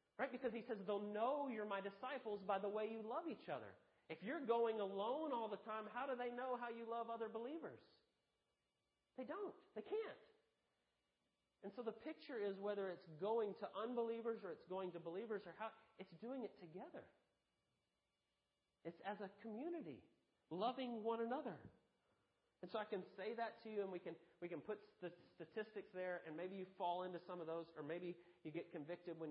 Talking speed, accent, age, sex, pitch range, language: 195 wpm, American, 40-59, male, 170-230 Hz, English